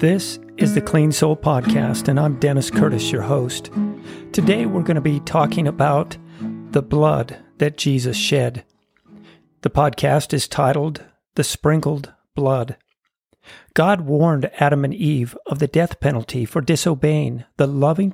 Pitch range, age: 130-165 Hz, 50-69